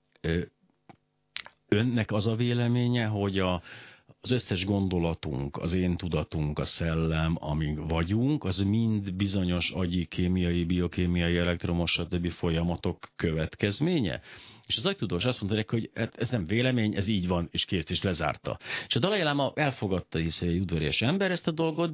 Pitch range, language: 85-120 Hz, Hungarian